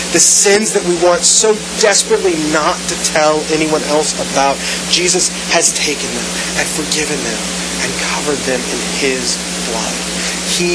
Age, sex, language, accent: 30-49, male, English, American